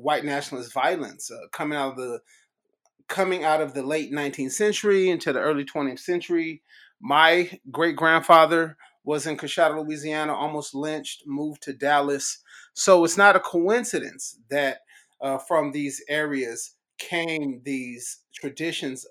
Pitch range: 130-160 Hz